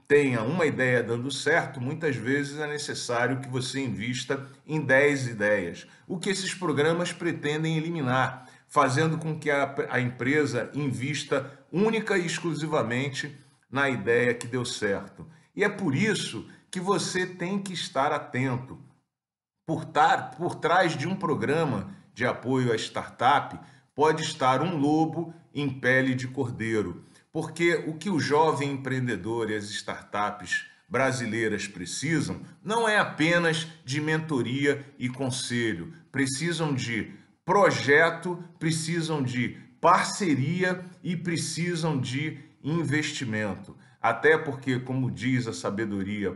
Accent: Brazilian